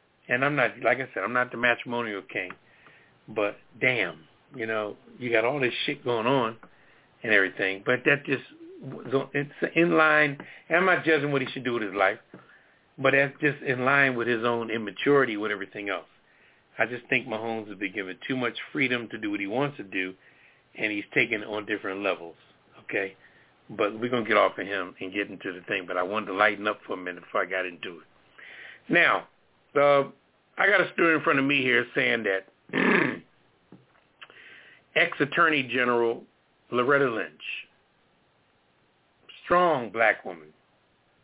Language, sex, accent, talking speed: English, male, American, 180 wpm